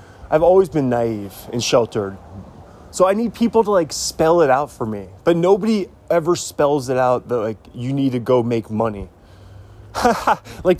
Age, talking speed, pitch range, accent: 20-39, 180 wpm, 105-165 Hz, American